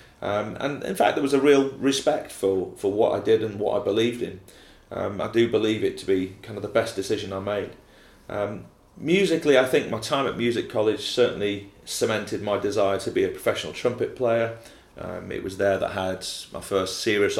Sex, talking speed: male, 215 wpm